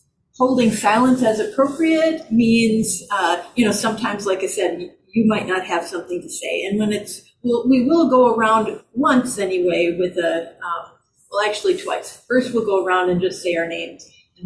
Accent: American